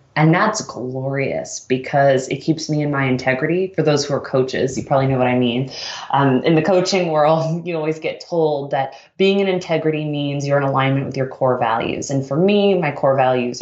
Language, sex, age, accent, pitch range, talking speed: English, female, 20-39, American, 135-160 Hz, 210 wpm